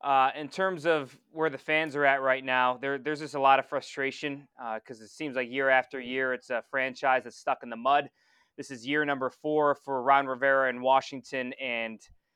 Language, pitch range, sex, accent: English, 130-145 Hz, male, American